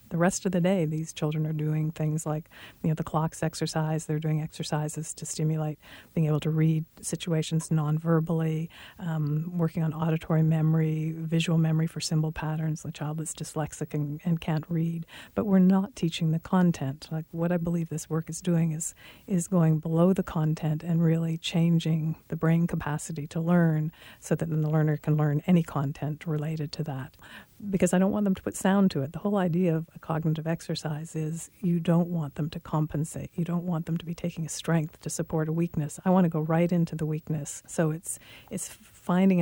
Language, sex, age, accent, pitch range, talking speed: English, female, 50-69, American, 155-170 Hz, 205 wpm